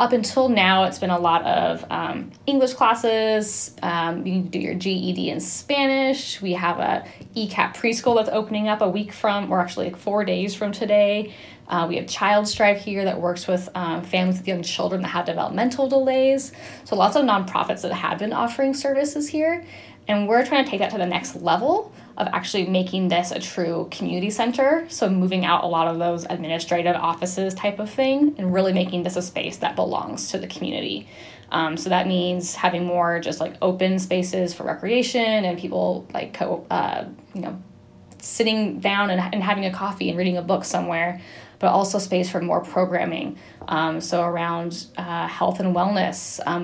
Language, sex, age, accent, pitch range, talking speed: English, female, 10-29, American, 175-215 Hz, 195 wpm